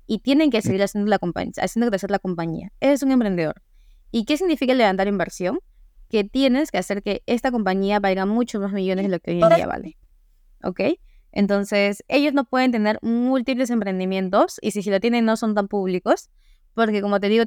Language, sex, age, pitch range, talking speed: Spanish, female, 20-39, 190-245 Hz, 205 wpm